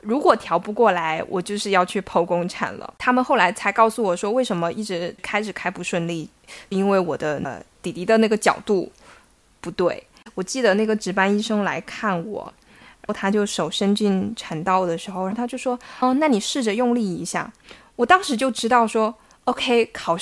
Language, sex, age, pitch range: Chinese, female, 20-39, 195-255 Hz